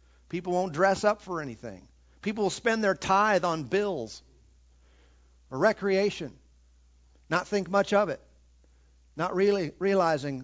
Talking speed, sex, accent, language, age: 130 wpm, male, American, English, 50-69